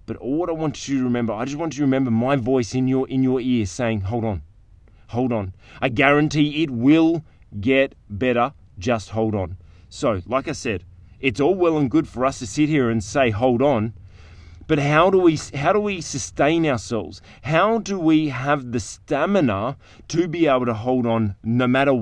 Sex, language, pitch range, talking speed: male, English, 110-145 Hz, 205 wpm